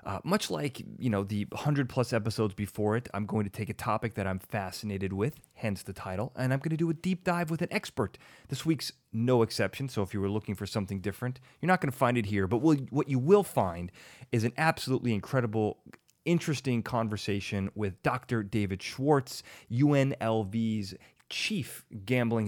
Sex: male